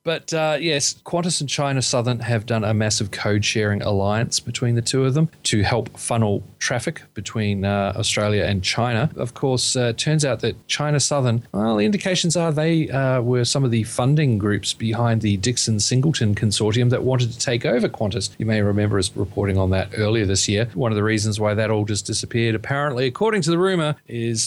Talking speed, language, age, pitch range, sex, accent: 205 wpm, English, 30-49, 105-130 Hz, male, Australian